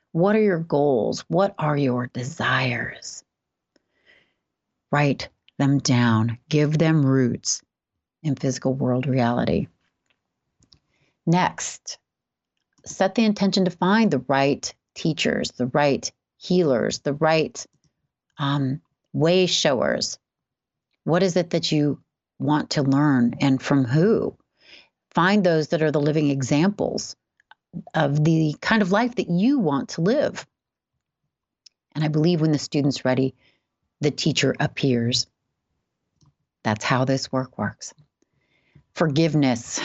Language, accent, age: English, American, 40-59